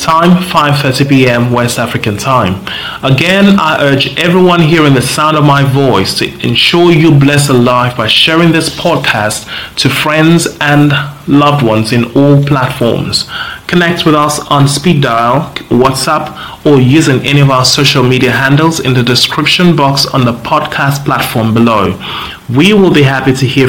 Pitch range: 130-155 Hz